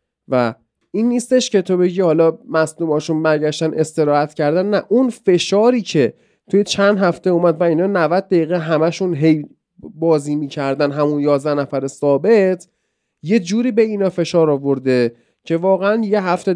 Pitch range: 155-205 Hz